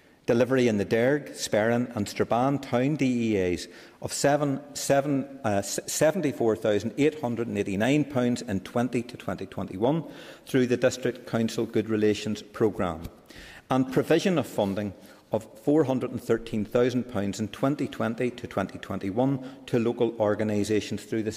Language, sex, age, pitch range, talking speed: English, male, 50-69, 105-135 Hz, 115 wpm